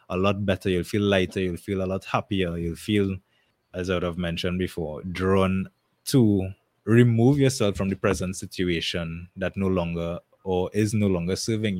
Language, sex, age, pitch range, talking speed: English, male, 20-39, 85-105 Hz, 180 wpm